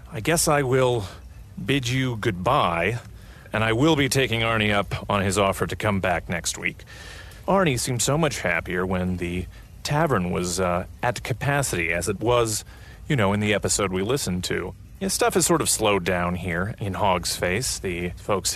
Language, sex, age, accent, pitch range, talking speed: English, male, 30-49, American, 95-130 Hz, 185 wpm